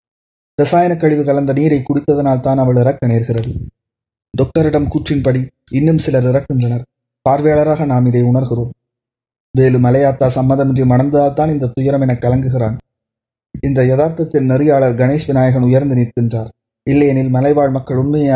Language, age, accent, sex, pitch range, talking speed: Tamil, 20-39, native, male, 120-140 Hz, 120 wpm